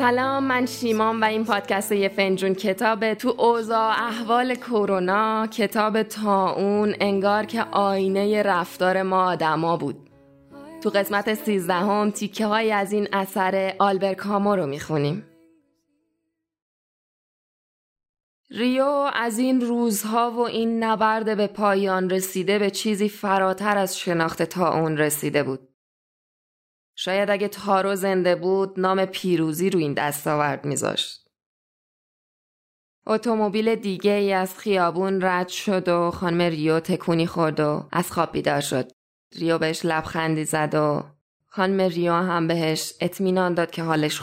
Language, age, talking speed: Persian, 20-39, 125 wpm